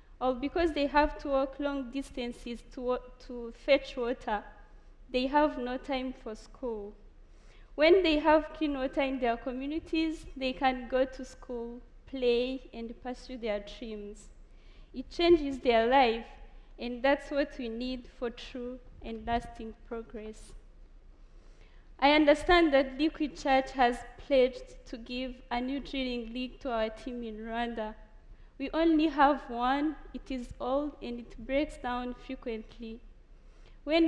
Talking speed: 145 wpm